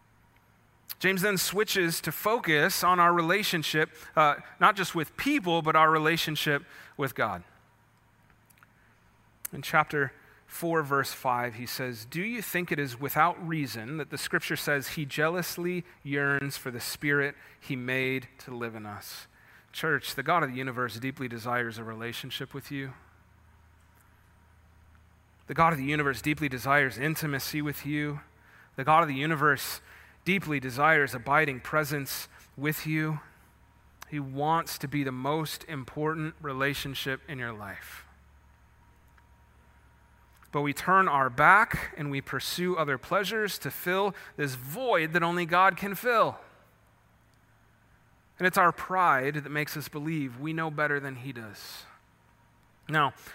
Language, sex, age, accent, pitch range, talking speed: English, male, 30-49, American, 125-160 Hz, 145 wpm